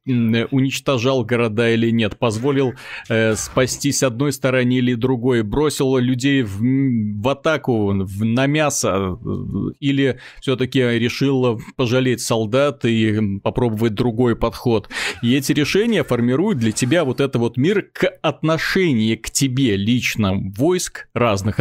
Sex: male